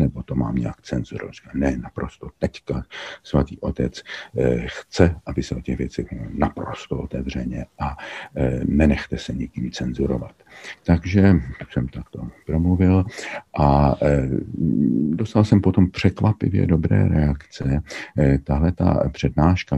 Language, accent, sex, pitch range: Czech, native, male, 65-80 Hz